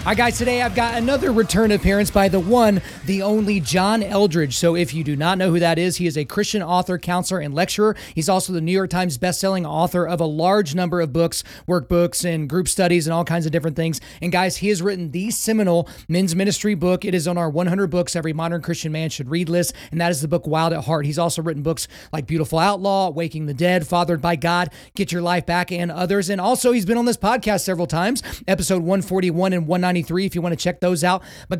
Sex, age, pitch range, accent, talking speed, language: male, 30-49, 170-205 Hz, American, 240 wpm, English